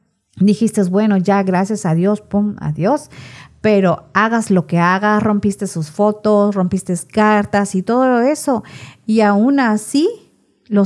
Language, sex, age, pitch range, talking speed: Spanish, female, 40-59, 175-230 Hz, 140 wpm